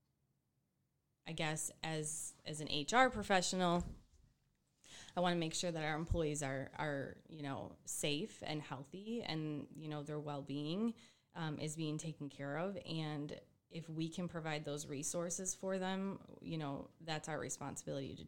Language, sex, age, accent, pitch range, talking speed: English, female, 20-39, American, 150-175 Hz, 160 wpm